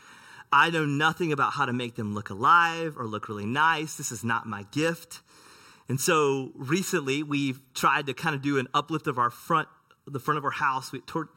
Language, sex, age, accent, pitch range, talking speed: English, male, 30-49, American, 130-165 Hz, 210 wpm